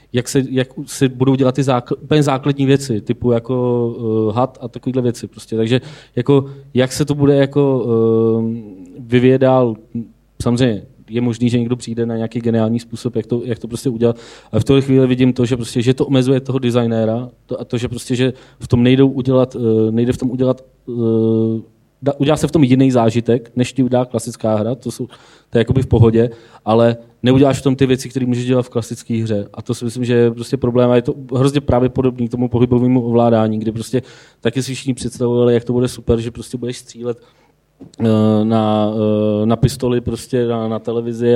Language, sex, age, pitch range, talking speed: Czech, male, 20-39, 115-130 Hz, 205 wpm